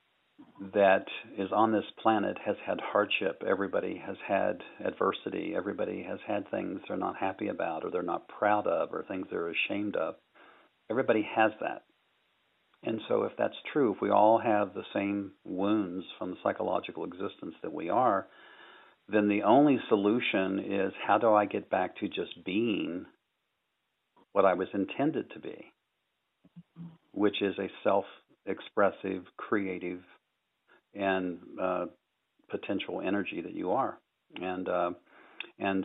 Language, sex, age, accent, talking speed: English, male, 50-69, American, 145 wpm